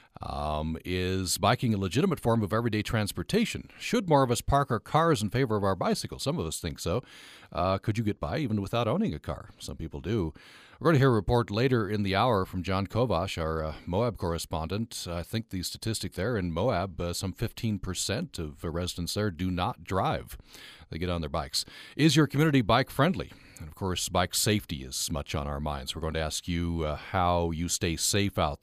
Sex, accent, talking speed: male, American, 220 wpm